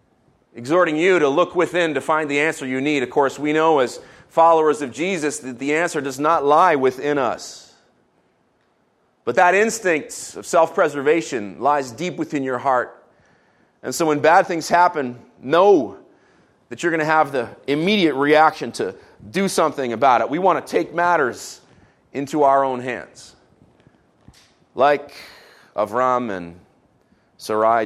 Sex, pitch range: male, 125-160 Hz